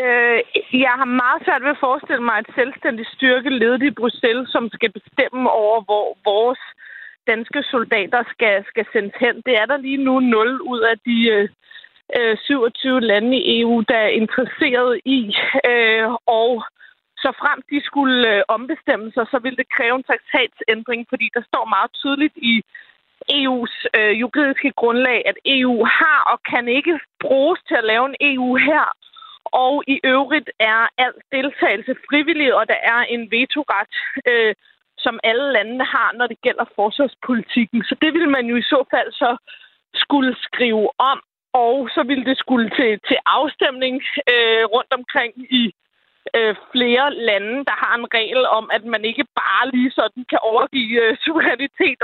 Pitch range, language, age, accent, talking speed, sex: 230-275 Hz, Danish, 30-49, native, 160 wpm, female